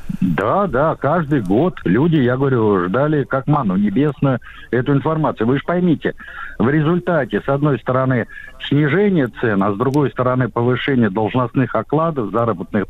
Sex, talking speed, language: male, 145 wpm, Russian